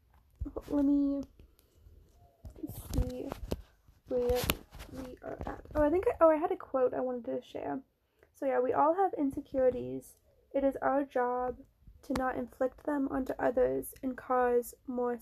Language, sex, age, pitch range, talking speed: English, female, 10-29, 245-280 Hz, 155 wpm